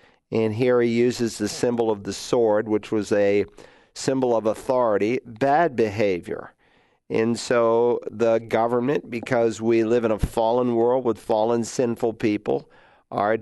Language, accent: English, American